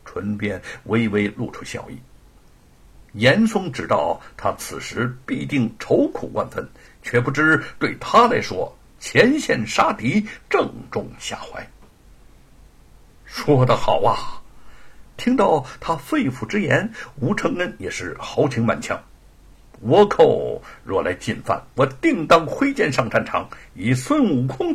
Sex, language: male, Chinese